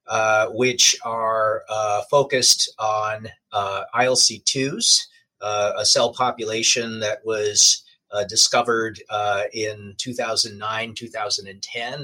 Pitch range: 110-135 Hz